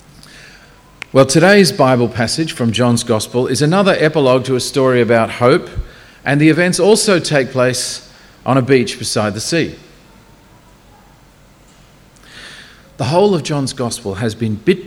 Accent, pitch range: Australian, 115-150 Hz